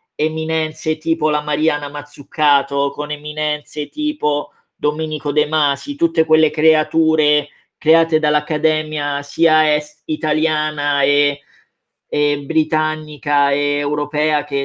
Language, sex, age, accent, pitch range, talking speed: Italian, male, 20-39, native, 150-165 Hz, 100 wpm